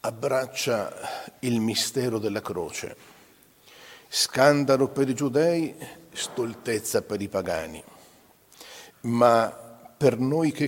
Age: 50-69